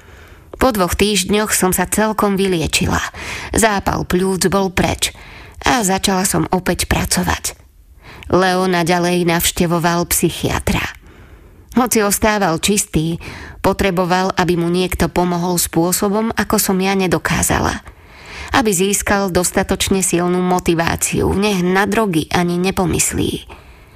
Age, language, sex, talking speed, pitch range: 20-39, Slovak, female, 110 wpm, 175-195 Hz